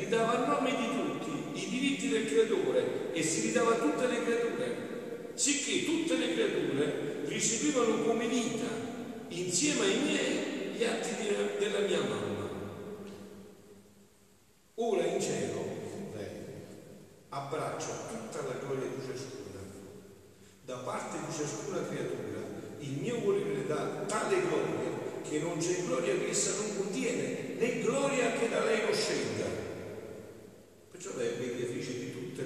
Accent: native